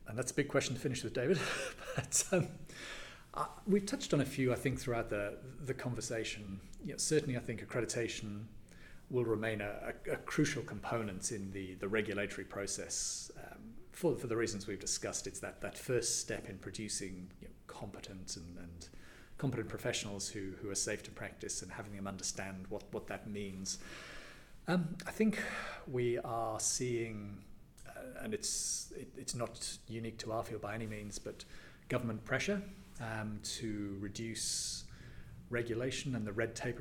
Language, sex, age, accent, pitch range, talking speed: English, male, 40-59, British, 100-120 Hz, 170 wpm